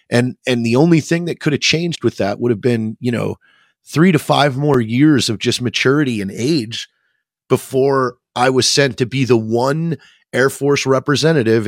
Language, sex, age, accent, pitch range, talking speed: English, male, 30-49, American, 115-140 Hz, 190 wpm